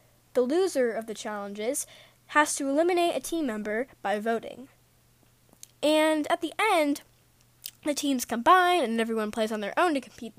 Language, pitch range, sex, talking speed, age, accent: English, 220-300 Hz, female, 160 wpm, 10-29, American